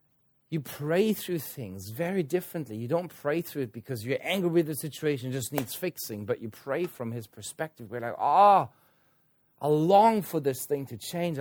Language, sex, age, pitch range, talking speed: English, male, 40-59, 115-155 Hz, 190 wpm